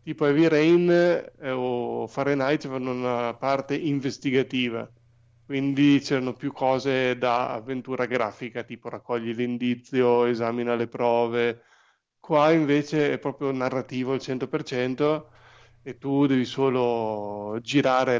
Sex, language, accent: male, Italian, native